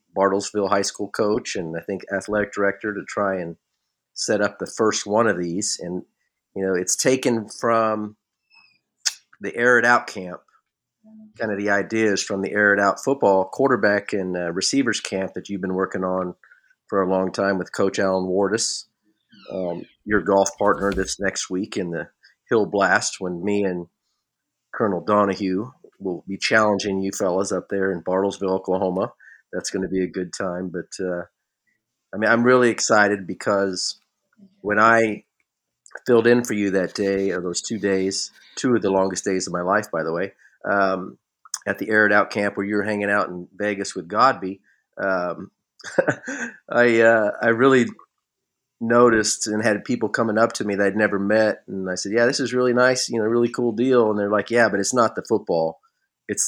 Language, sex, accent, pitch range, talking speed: English, male, American, 95-110 Hz, 185 wpm